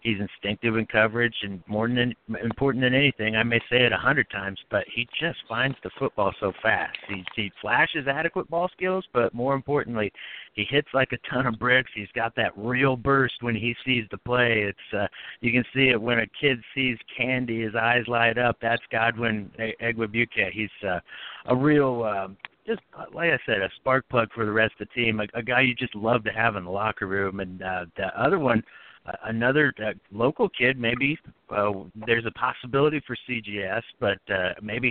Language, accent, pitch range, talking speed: English, American, 105-125 Hz, 205 wpm